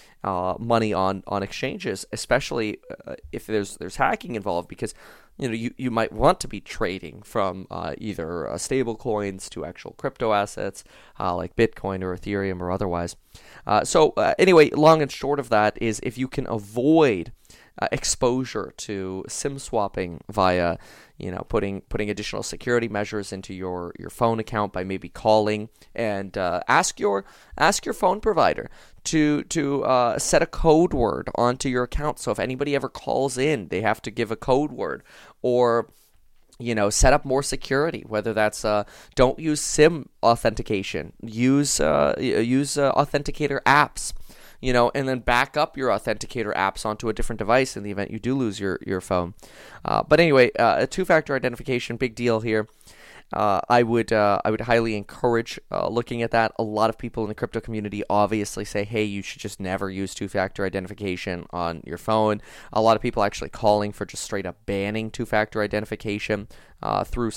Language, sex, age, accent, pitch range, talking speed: English, male, 20-39, American, 100-125 Hz, 185 wpm